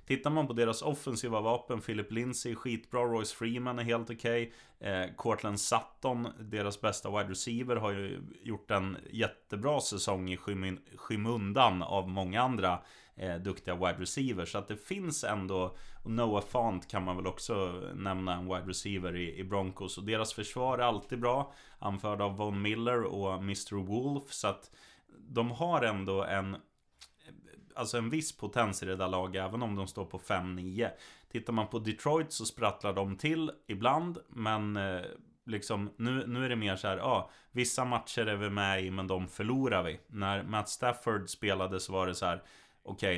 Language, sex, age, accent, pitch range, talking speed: Swedish, male, 20-39, native, 95-115 Hz, 180 wpm